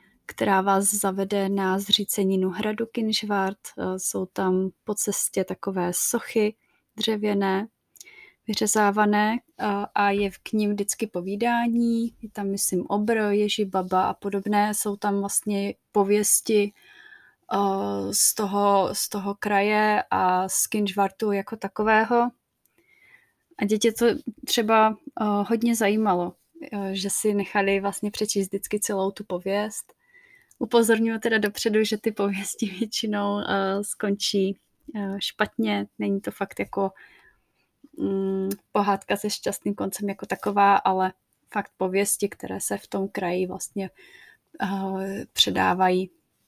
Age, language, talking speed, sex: 20-39, Czech, 110 wpm, female